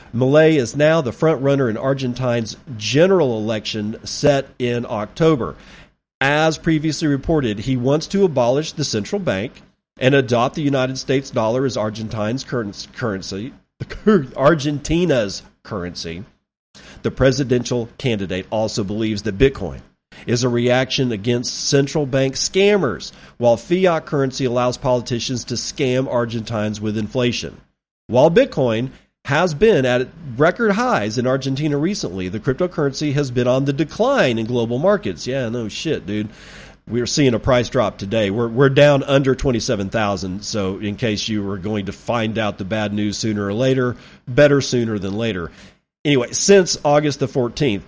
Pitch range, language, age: 110-145 Hz, English, 40-59